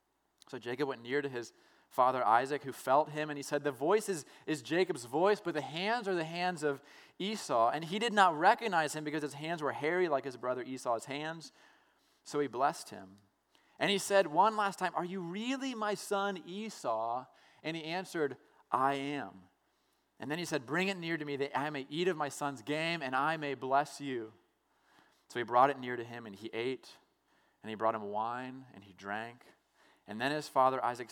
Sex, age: male, 30-49